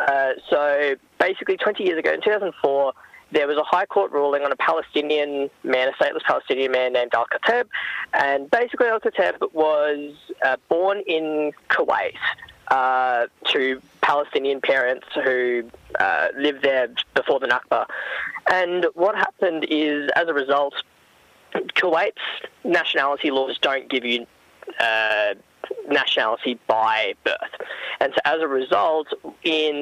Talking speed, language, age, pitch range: 135 wpm, English, 10-29, 130-195 Hz